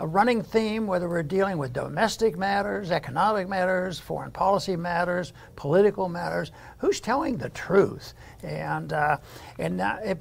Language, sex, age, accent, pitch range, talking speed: English, male, 60-79, American, 175-205 Hz, 145 wpm